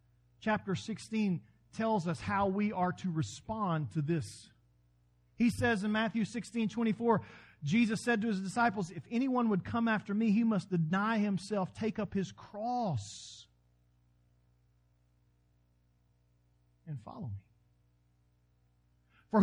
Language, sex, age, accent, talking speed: English, male, 40-59, American, 125 wpm